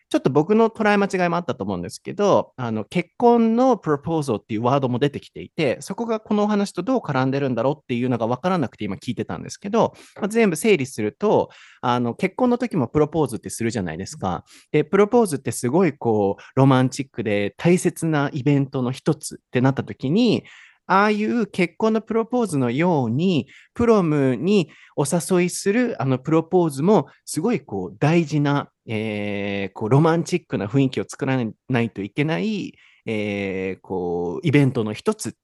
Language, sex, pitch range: Japanese, male, 115-180 Hz